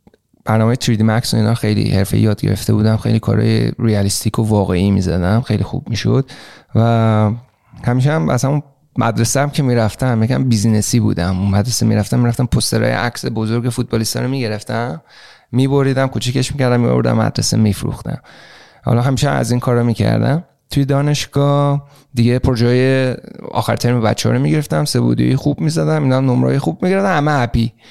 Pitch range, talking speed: 110-140 Hz, 170 wpm